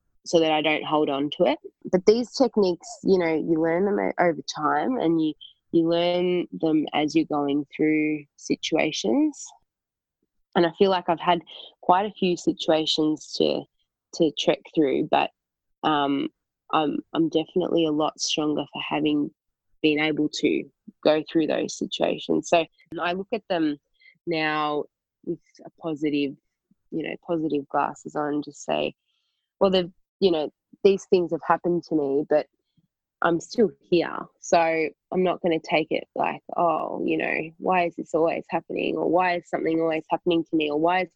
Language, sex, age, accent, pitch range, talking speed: English, female, 20-39, Australian, 150-175 Hz, 170 wpm